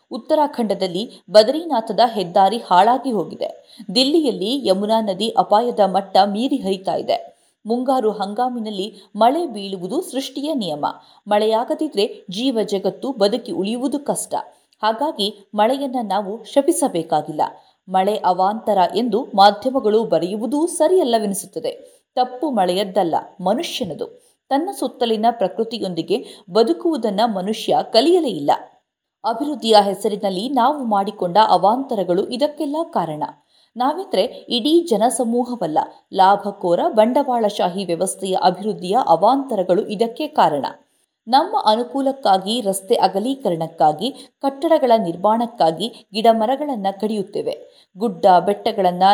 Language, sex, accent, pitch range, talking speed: Kannada, female, native, 195-270 Hz, 90 wpm